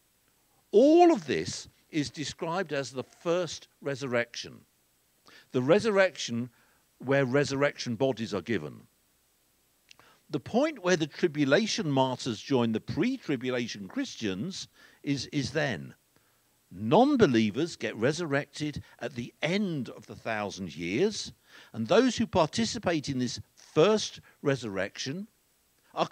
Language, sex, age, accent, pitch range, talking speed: English, male, 60-79, British, 140-225 Hz, 110 wpm